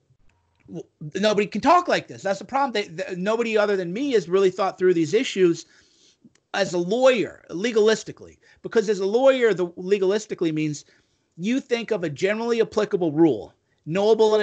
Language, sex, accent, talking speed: English, male, American, 160 wpm